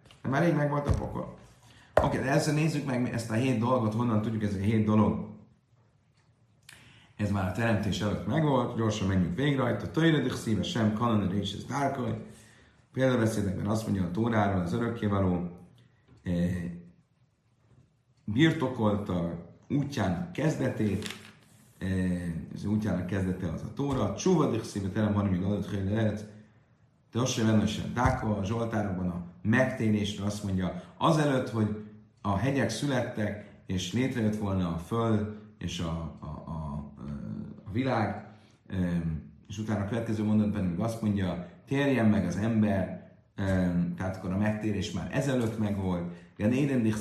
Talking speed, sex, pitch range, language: 145 wpm, male, 95-120 Hz, Hungarian